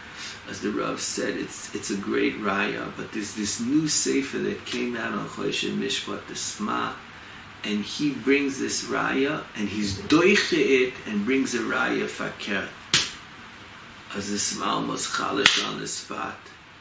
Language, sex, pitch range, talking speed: English, male, 105-150 Hz, 155 wpm